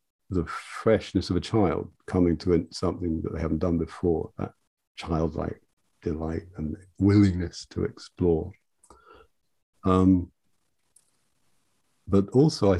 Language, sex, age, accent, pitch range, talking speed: English, male, 50-69, British, 85-100 Hz, 115 wpm